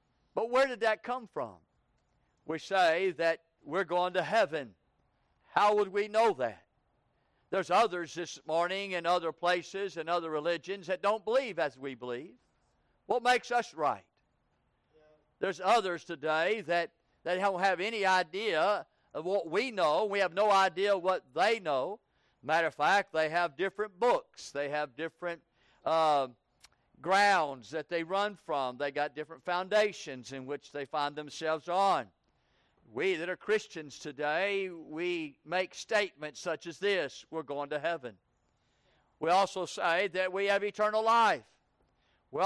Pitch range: 160-200 Hz